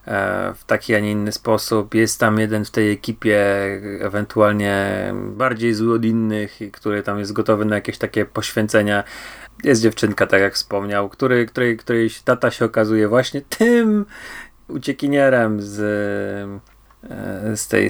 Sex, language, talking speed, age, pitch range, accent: male, Polish, 135 wpm, 30-49, 105-130 Hz, native